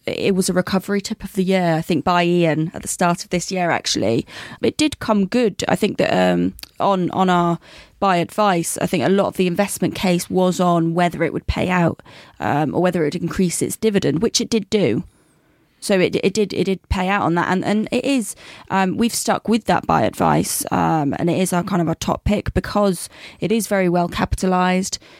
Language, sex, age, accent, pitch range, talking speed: English, female, 20-39, British, 170-195 Hz, 230 wpm